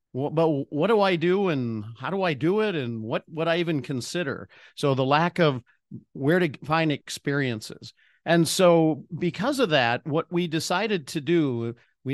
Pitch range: 130-165 Hz